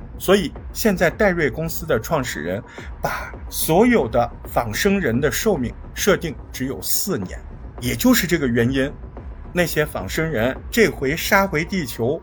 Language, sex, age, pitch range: Chinese, male, 50-69, 115-185 Hz